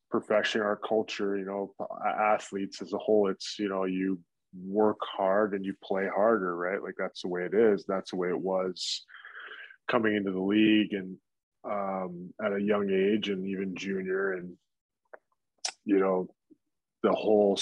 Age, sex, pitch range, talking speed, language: 20-39, male, 90-105 Hz, 165 wpm, English